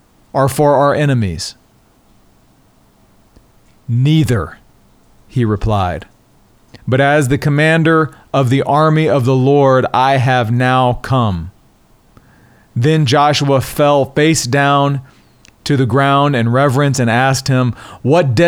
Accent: American